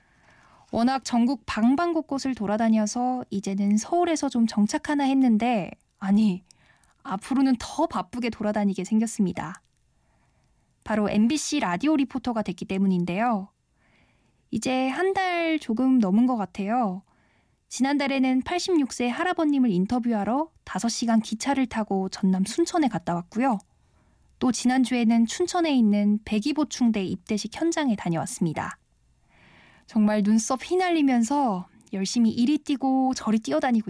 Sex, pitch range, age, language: female, 200-270 Hz, 10-29, Korean